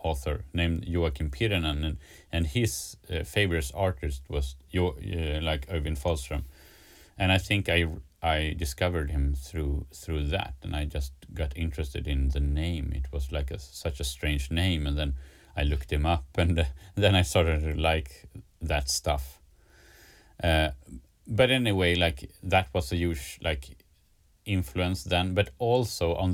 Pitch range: 70-90 Hz